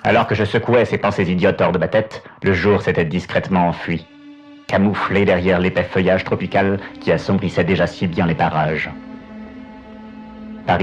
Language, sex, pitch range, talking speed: French, male, 90-105 Hz, 160 wpm